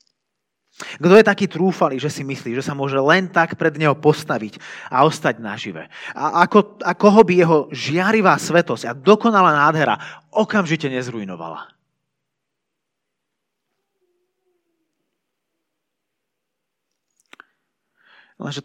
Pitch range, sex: 125-180 Hz, male